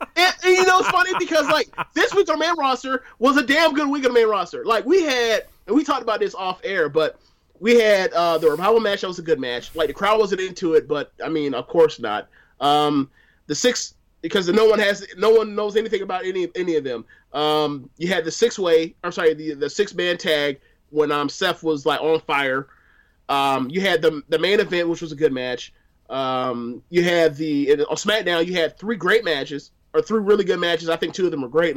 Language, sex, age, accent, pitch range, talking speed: English, male, 30-49, American, 155-220 Hz, 240 wpm